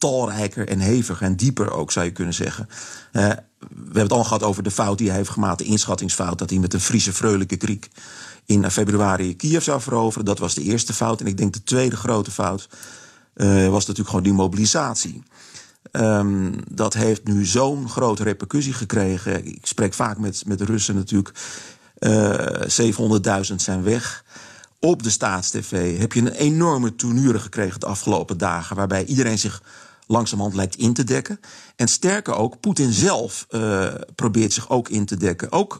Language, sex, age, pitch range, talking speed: Dutch, male, 40-59, 100-115 Hz, 180 wpm